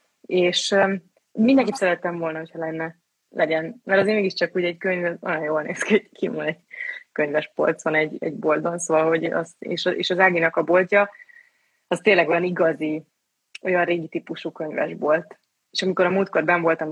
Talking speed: 165 wpm